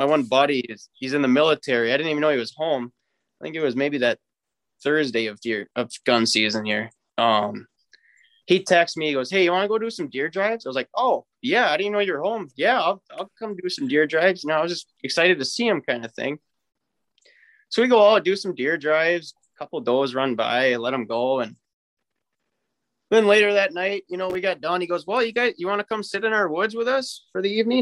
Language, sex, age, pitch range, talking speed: English, male, 20-39, 135-195 Hz, 250 wpm